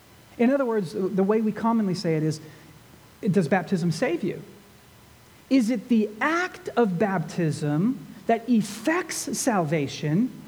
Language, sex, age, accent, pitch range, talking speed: English, male, 40-59, American, 200-285 Hz, 130 wpm